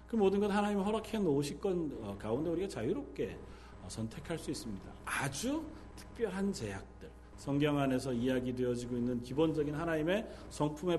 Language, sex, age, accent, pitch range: Korean, male, 40-59, native, 110-180 Hz